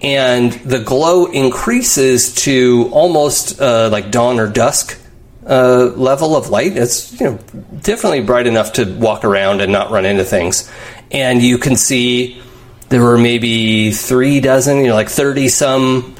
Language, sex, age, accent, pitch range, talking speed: English, male, 30-49, American, 115-130 Hz, 155 wpm